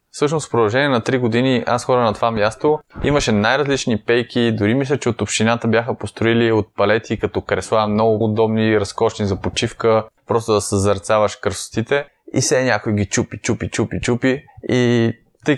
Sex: male